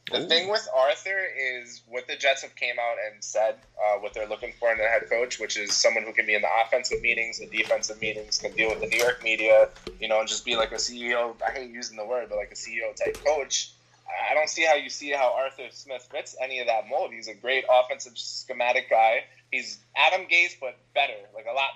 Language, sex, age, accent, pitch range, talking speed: English, male, 20-39, American, 115-150 Hz, 245 wpm